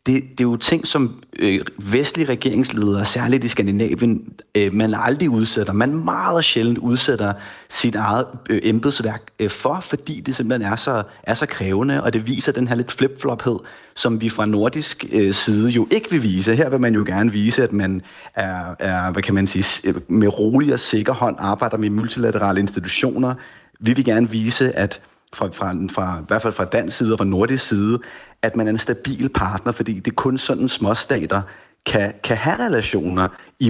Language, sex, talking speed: Danish, male, 185 wpm